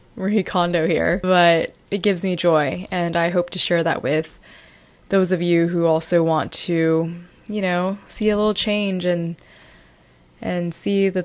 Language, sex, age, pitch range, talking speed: English, female, 20-39, 165-190 Hz, 170 wpm